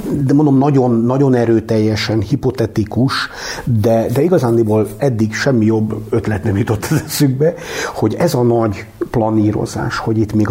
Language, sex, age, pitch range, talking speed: Hungarian, male, 50-69, 105-120 Hz, 145 wpm